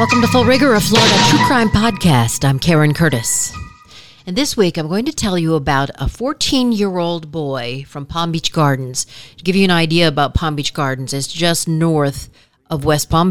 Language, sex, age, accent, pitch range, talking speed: English, female, 40-59, American, 135-170 Hz, 195 wpm